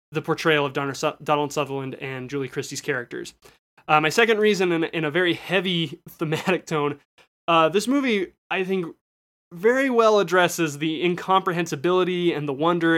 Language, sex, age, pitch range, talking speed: English, male, 20-39, 145-175 Hz, 155 wpm